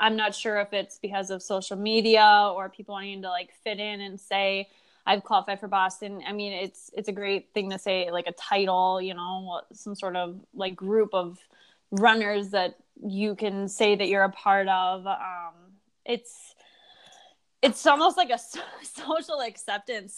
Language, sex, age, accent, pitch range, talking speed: English, female, 20-39, American, 185-215 Hz, 180 wpm